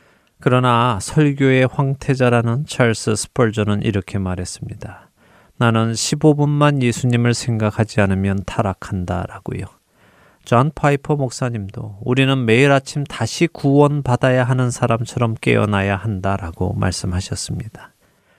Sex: male